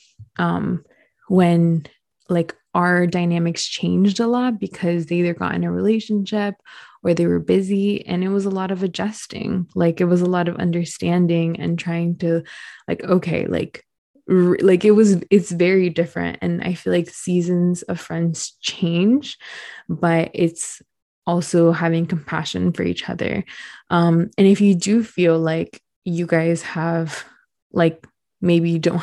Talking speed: 155 wpm